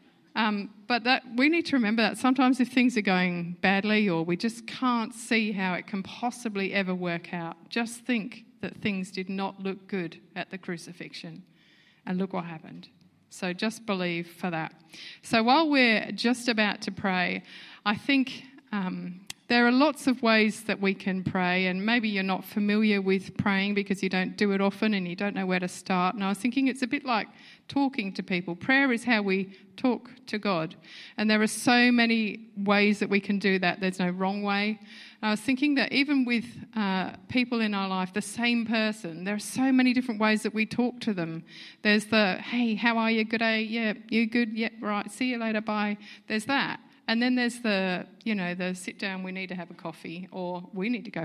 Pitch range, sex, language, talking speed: 185-235 Hz, female, English, 215 wpm